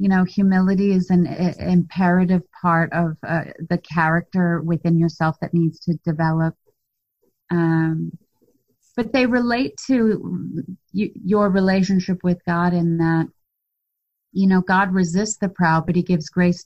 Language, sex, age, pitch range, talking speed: English, female, 30-49, 165-190 Hz, 135 wpm